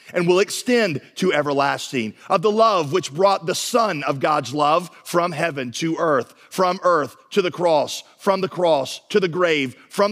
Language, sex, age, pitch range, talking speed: English, male, 40-59, 150-220 Hz, 185 wpm